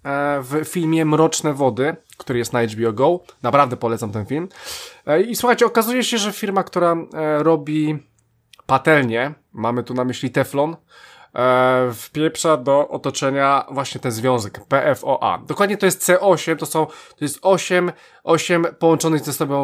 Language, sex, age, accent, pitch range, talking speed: Polish, male, 20-39, native, 125-160 Hz, 145 wpm